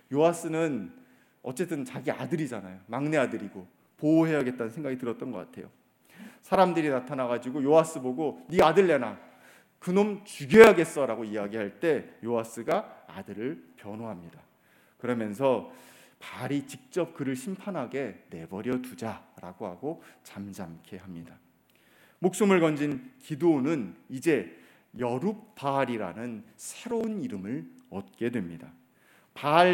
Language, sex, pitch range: Korean, male, 120-190 Hz